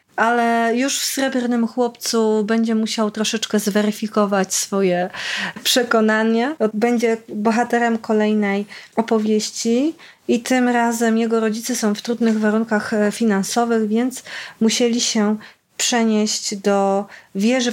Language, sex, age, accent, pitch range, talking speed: Polish, female, 30-49, native, 205-240 Hz, 105 wpm